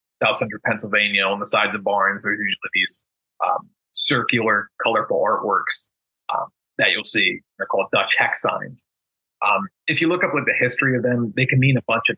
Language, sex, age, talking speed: English, male, 30-49, 195 wpm